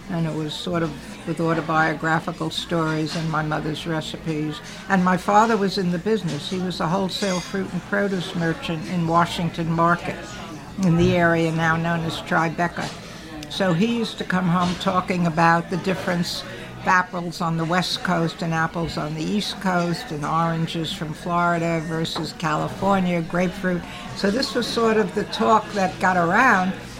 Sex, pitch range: female, 165-195 Hz